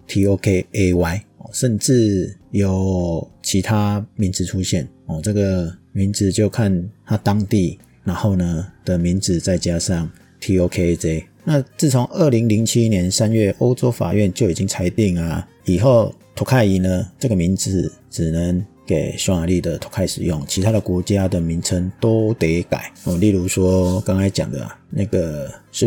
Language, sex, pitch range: Chinese, male, 90-110 Hz